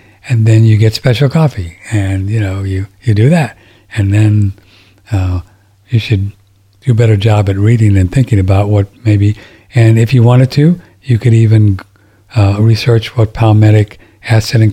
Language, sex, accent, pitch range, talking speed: English, male, American, 100-115 Hz, 175 wpm